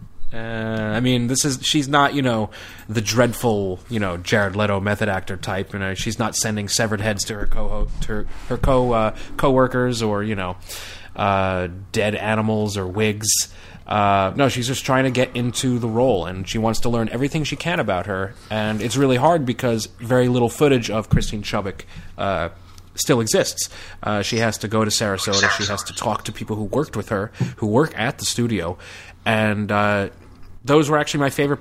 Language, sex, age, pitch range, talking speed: English, male, 30-49, 95-120 Hz, 200 wpm